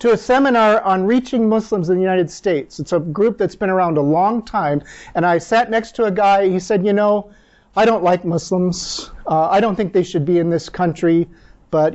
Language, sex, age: English, male, 40-59